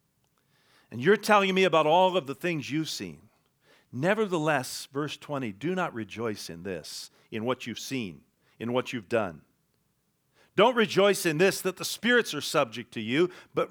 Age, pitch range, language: 50-69, 140-200 Hz, English